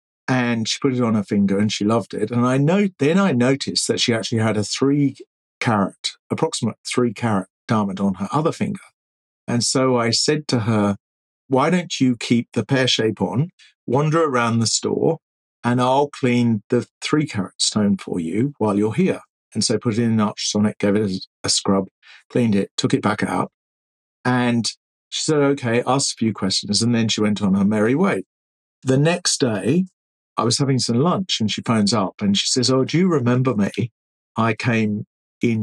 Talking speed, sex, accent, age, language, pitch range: 200 wpm, male, British, 50-69, English, 105-135 Hz